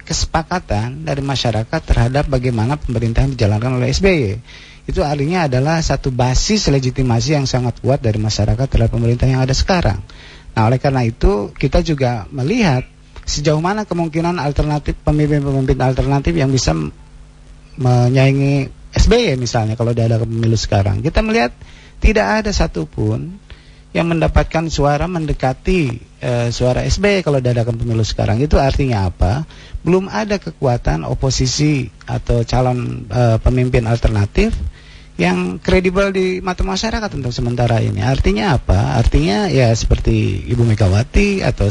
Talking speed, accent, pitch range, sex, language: 130 wpm, native, 115-155 Hz, male, Indonesian